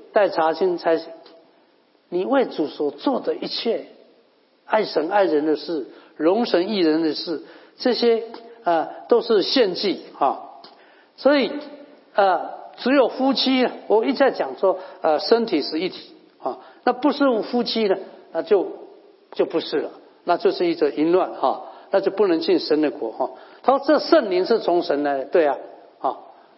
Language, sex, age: English, male, 50-69